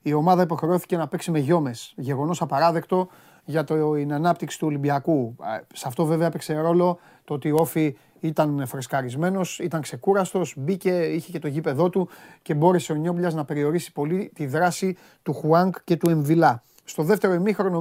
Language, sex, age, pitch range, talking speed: Greek, male, 30-49, 150-185 Hz, 170 wpm